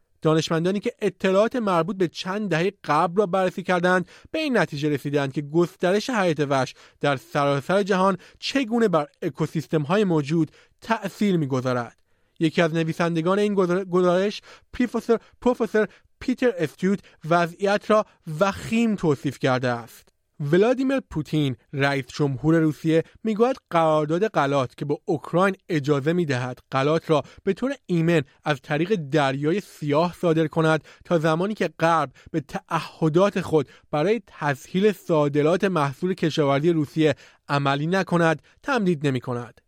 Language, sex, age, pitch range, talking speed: Persian, male, 30-49, 155-200 Hz, 125 wpm